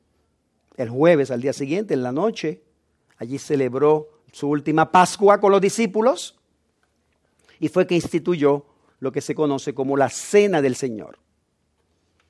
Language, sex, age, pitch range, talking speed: English, male, 50-69, 140-205 Hz, 140 wpm